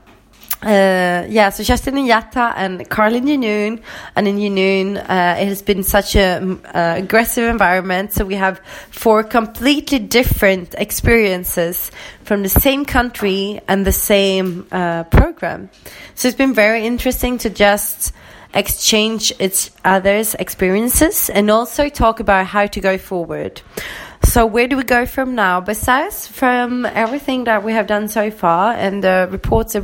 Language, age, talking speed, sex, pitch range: English, 20-39, 155 wpm, female, 190-240 Hz